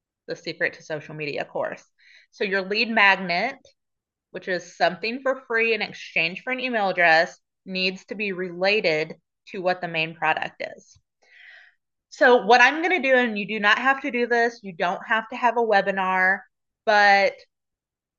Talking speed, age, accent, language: 175 wpm, 30-49, American, English